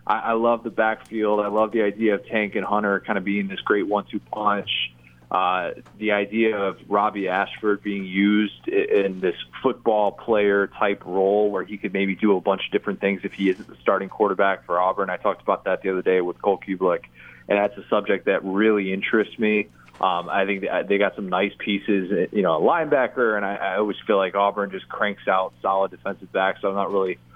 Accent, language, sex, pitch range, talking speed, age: American, English, male, 95-110 Hz, 210 wpm, 20-39